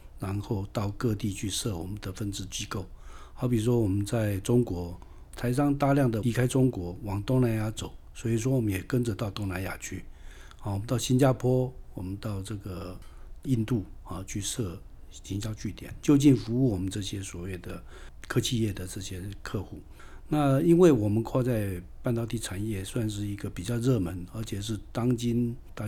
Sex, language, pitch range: male, Chinese, 95-115 Hz